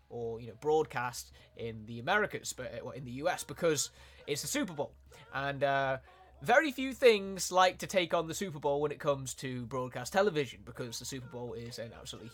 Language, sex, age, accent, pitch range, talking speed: Italian, male, 20-39, British, 125-170 Hz, 195 wpm